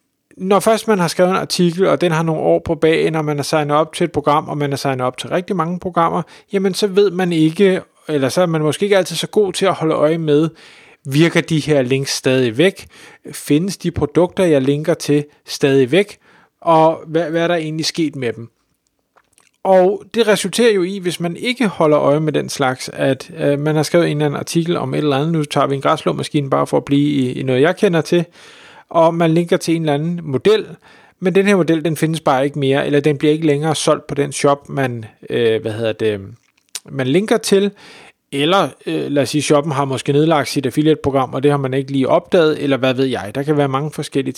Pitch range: 140-175 Hz